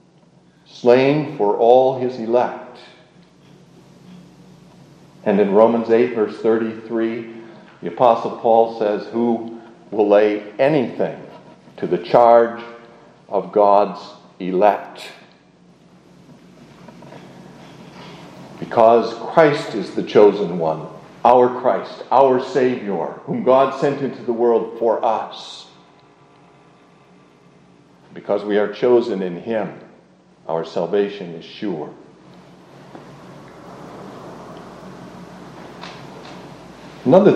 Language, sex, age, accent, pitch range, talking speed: English, male, 50-69, American, 105-135 Hz, 85 wpm